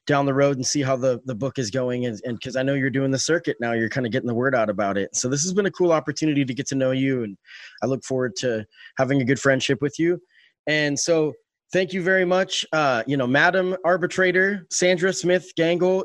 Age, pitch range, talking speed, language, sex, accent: 20-39, 125-160 Hz, 250 wpm, English, male, American